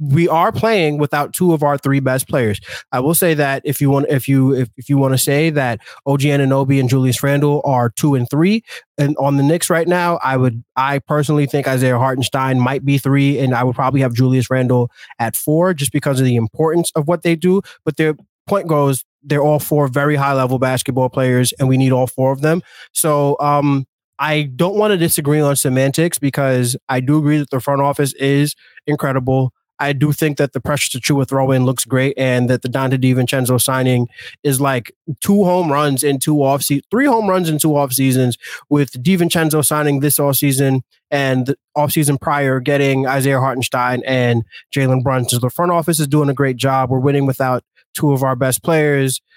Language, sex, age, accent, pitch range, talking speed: English, male, 20-39, American, 130-150 Hz, 205 wpm